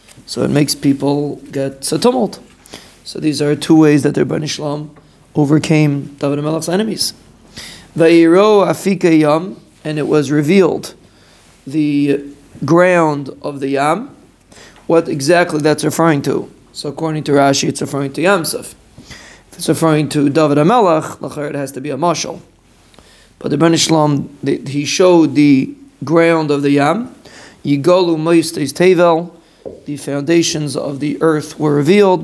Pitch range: 145-165 Hz